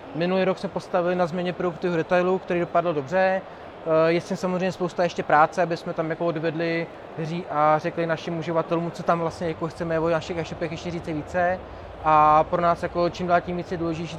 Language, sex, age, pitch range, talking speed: Czech, male, 20-39, 160-175 Hz, 195 wpm